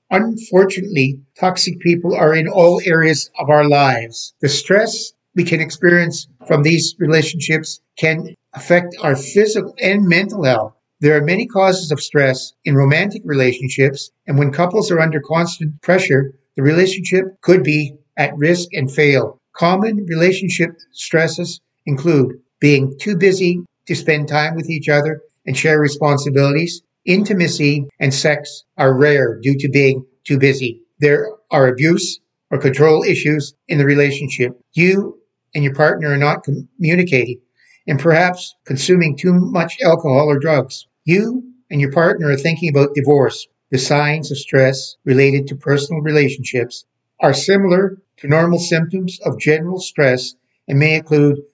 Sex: male